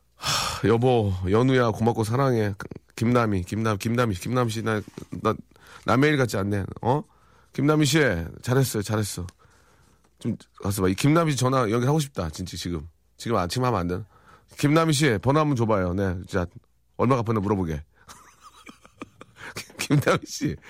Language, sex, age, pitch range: Korean, male, 40-59, 105-165 Hz